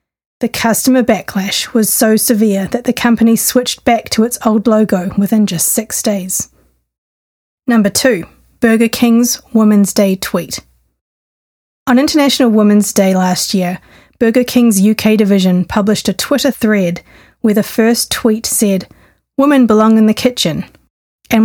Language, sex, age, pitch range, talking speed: English, female, 30-49, 195-225 Hz, 145 wpm